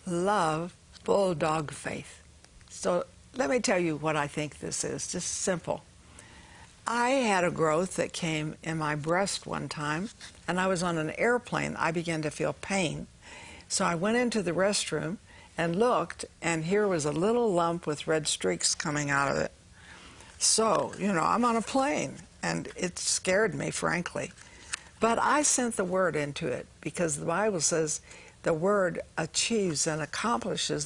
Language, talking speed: English, 165 wpm